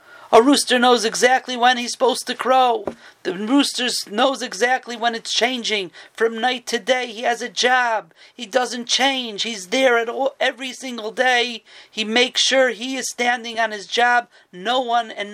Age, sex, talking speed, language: 40-59, male, 180 wpm, English